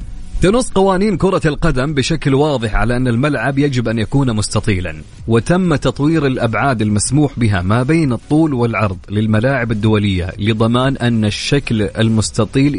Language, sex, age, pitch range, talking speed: English, male, 30-49, 110-140 Hz, 130 wpm